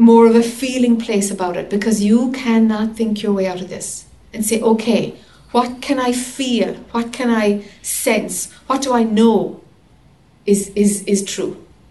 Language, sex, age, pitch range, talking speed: English, female, 60-79, 200-250 Hz, 175 wpm